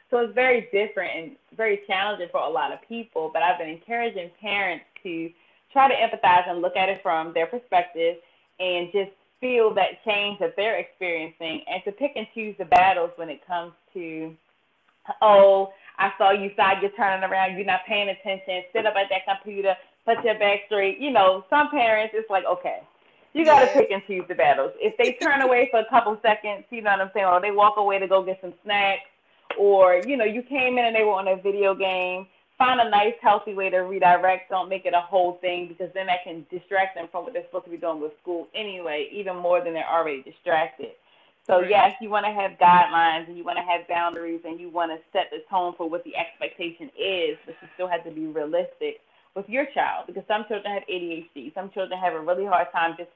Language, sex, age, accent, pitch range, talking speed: English, female, 20-39, American, 175-220 Hz, 225 wpm